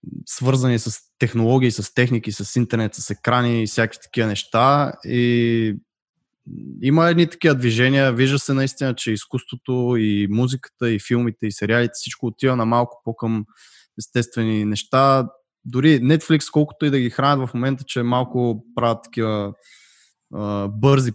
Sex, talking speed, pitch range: male, 140 wpm, 115-135 Hz